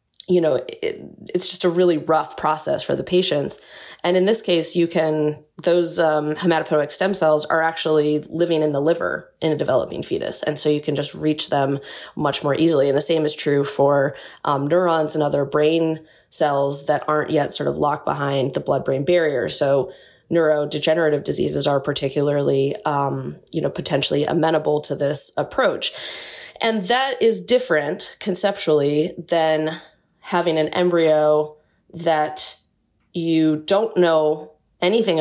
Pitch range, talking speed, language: 150-165 Hz, 155 wpm, English